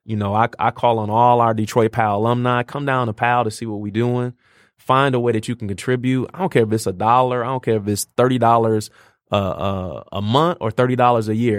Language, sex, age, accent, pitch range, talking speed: English, male, 20-39, American, 115-130 Hz, 245 wpm